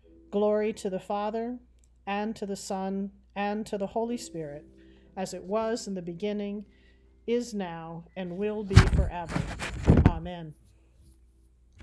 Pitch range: 170-225 Hz